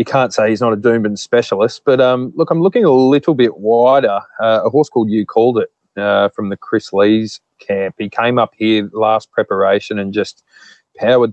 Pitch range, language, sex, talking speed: 100-125 Hz, English, male, 205 wpm